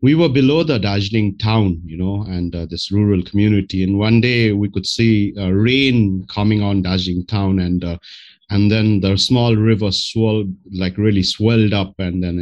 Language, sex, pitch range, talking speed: English, male, 95-115 Hz, 190 wpm